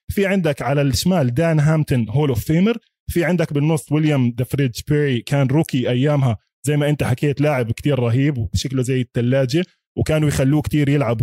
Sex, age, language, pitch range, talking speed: male, 20-39, Arabic, 130-185 Hz, 170 wpm